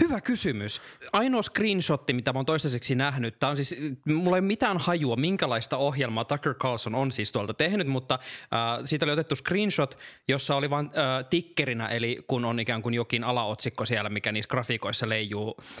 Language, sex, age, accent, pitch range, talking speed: Finnish, male, 20-39, native, 120-160 Hz, 180 wpm